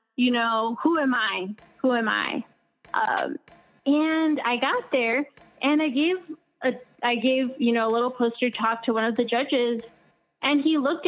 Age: 20-39